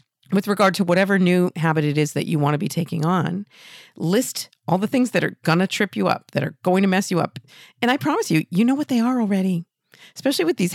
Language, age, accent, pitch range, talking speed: English, 50-69, American, 160-205 Hz, 255 wpm